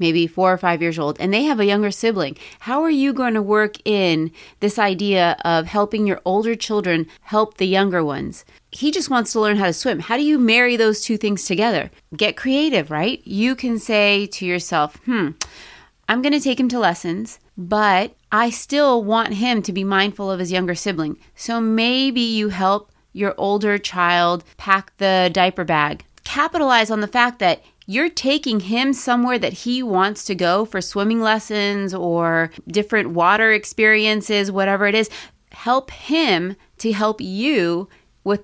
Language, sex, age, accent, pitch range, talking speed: English, female, 30-49, American, 190-235 Hz, 180 wpm